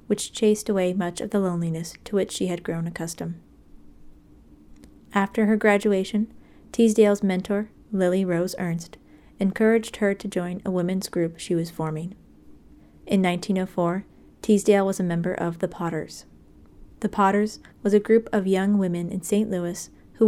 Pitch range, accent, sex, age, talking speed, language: 165-200 Hz, American, female, 30-49, 155 wpm, English